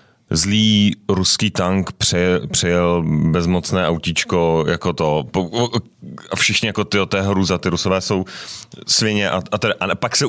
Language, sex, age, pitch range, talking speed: Czech, male, 30-49, 90-110 Hz, 145 wpm